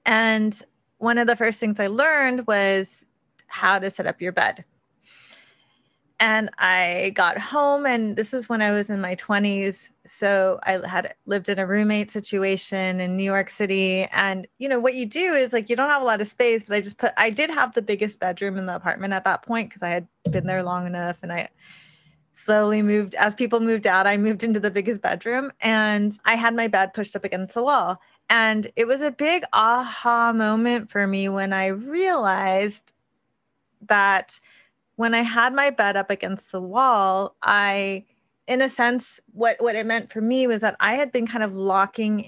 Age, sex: 30-49, female